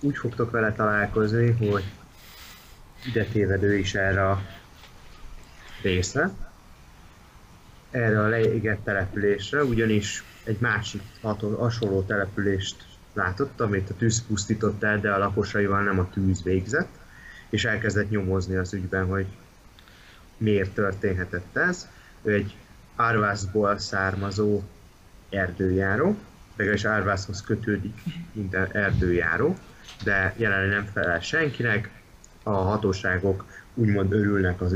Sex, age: male, 30-49